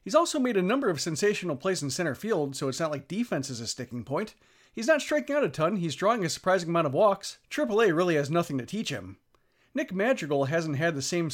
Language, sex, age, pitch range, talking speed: English, male, 40-59, 145-200 Hz, 250 wpm